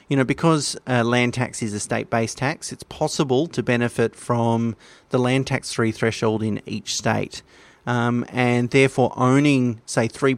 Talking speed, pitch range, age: 170 wpm, 110-130 Hz, 30-49